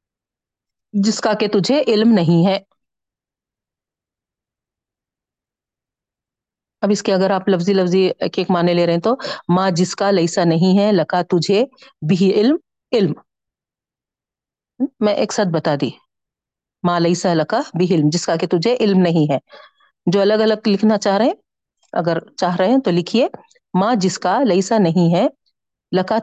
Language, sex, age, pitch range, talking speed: Urdu, female, 40-59, 180-225 Hz, 155 wpm